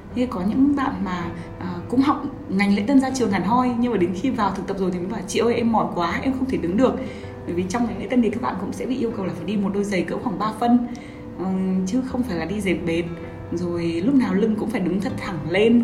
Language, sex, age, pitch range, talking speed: Vietnamese, female, 20-39, 175-235 Hz, 290 wpm